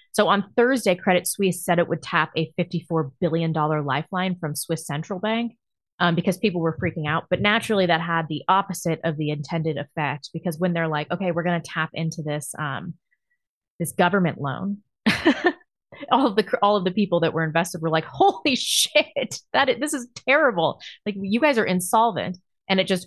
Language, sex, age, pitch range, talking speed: English, female, 30-49, 155-190 Hz, 200 wpm